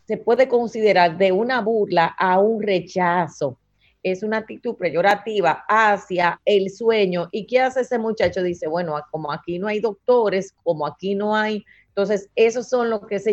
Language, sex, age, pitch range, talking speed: Spanish, female, 30-49, 185-225 Hz, 170 wpm